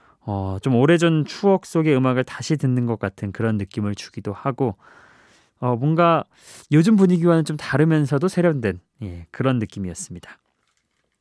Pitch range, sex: 110-160 Hz, male